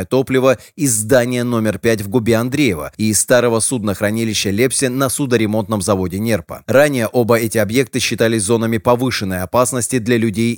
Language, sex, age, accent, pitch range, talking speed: Russian, male, 20-39, native, 110-130 Hz, 155 wpm